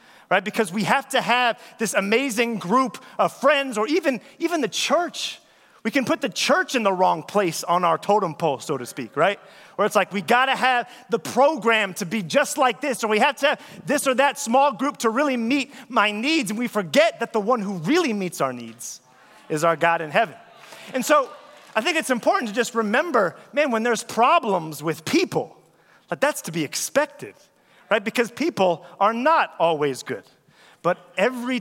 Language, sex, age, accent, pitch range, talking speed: English, male, 30-49, American, 185-255 Hz, 205 wpm